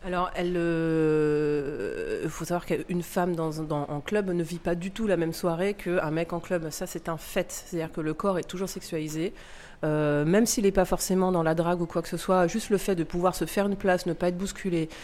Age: 30-49